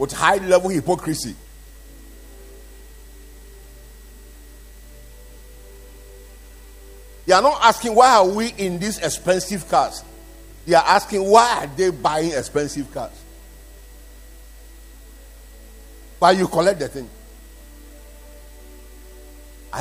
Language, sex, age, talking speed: English, male, 50-69, 90 wpm